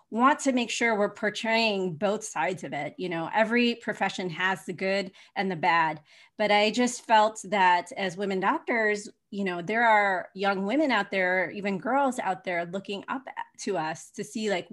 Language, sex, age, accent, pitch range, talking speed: English, female, 30-49, American, 195-245 Hz, 190 wpm